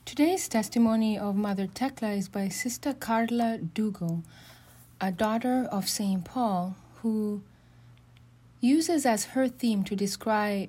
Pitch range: 175-245 Hz